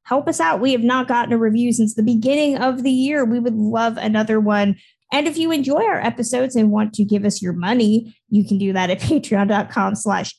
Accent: American